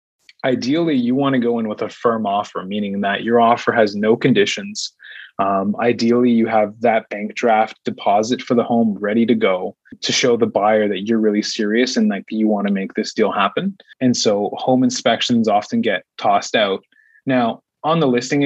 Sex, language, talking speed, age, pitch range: male, English, 195 wpm, 20-39, 105-135 Hz